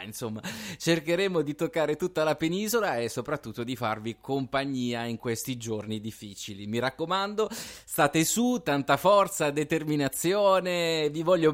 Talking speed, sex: 130 wpm, male